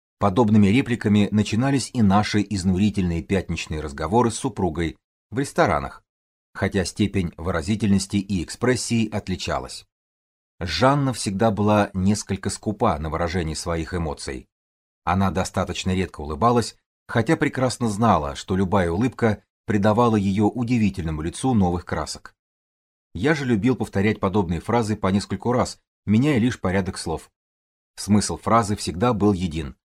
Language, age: Russian, 30-49